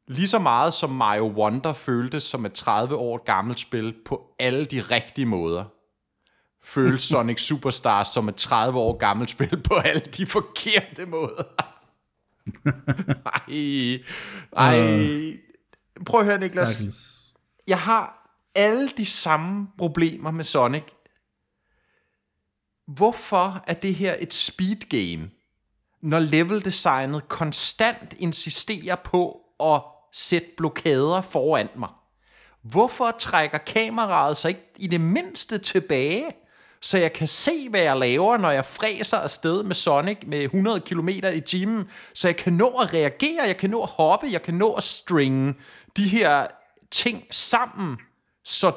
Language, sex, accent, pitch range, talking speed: Danish, male, native, 140-200 Hz, 135 wpm